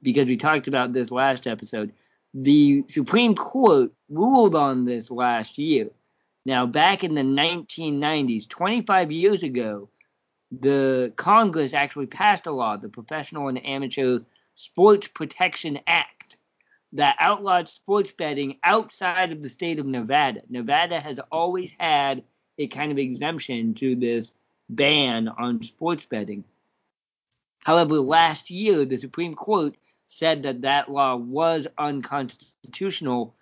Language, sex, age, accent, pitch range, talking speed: English, male, 40-59, American, 130-180 Hz, 130 wpm